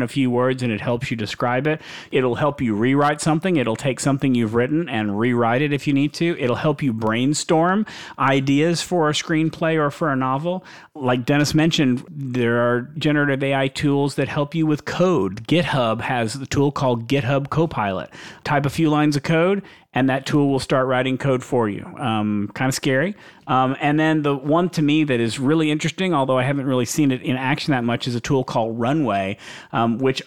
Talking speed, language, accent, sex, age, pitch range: 210 wpm, English, American, male, 40-59, 120-150 Hz